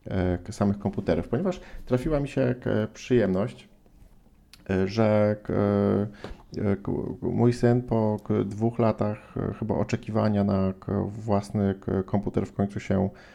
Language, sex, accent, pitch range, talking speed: Polish, male, native, 95-110 Hz, 95 wpm